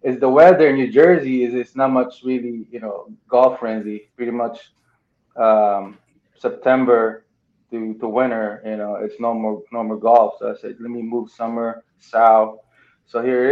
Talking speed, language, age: 180 wpm, English, 20-39